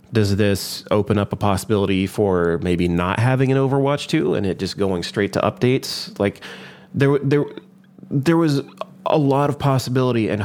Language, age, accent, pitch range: English, 30-49, American, 100-130 Hz